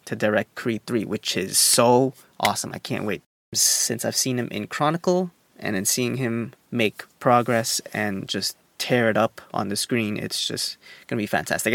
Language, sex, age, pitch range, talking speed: English, male, 20-39, 110-135 Hz, 190 wpm